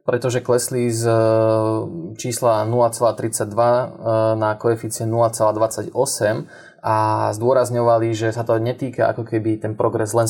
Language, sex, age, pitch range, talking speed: Slovak, male, 20-39, 110-125 Hz, 110 wpm